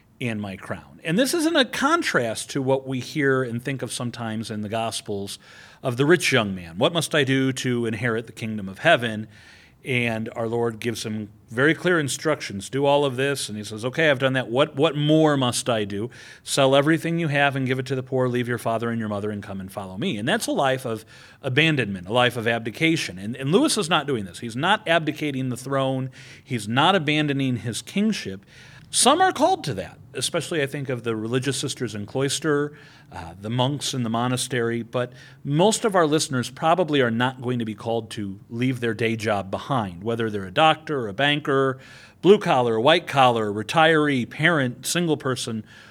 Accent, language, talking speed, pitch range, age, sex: American, English, 210 wpm, 115-145 Hz, 40-59, male